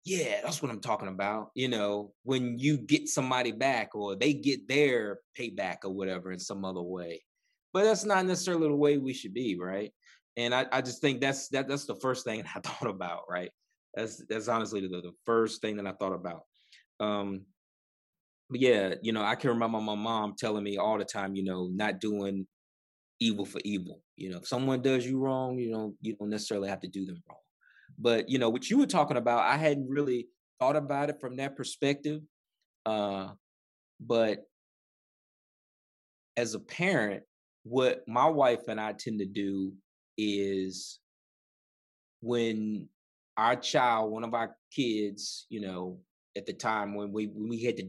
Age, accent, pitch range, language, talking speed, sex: 20-39, American, 95-130 Hz, English, 185 wpm, male